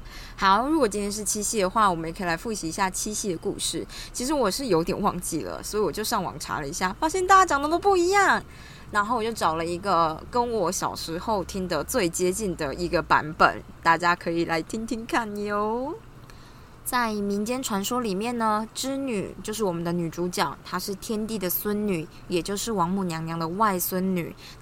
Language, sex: Chinese, female